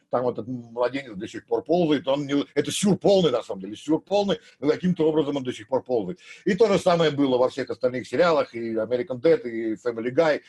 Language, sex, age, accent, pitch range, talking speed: Russian, male, 50-69, native, 120-180 Hz, 235 wpm